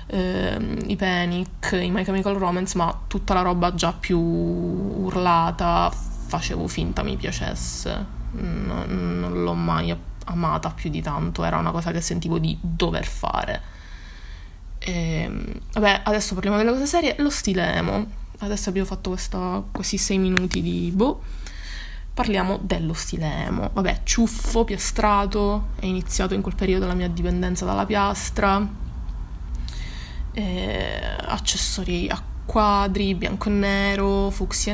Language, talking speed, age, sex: Italian, 130 wpm, 20-39, female